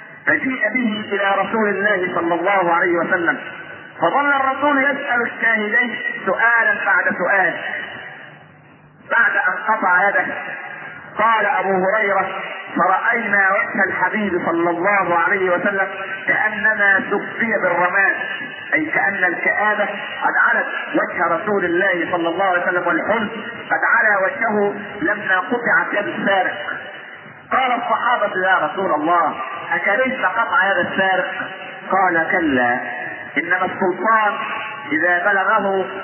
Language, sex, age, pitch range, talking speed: Arabic, male, 50-69, 190-240 Hz, 115 wpm